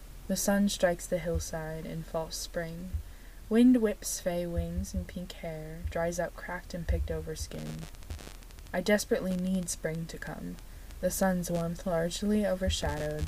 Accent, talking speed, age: American, 150 wpm, 20-39